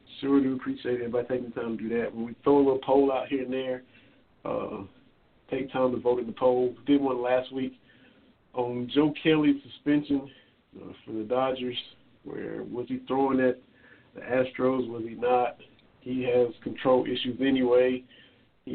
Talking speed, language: 180 wpm, English